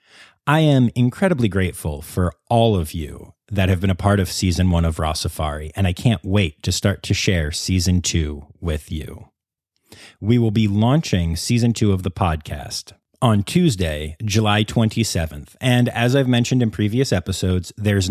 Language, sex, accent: English, male, American